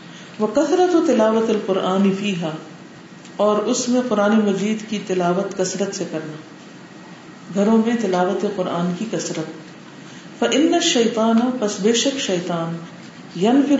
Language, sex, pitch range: Urdu, female, 180-235 Hz